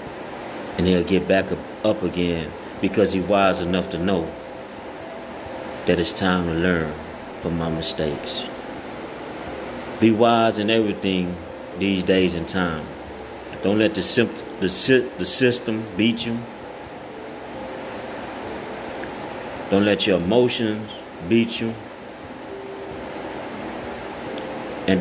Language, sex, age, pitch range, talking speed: English, male, 30-49, 85-110 Hz, 105 wpm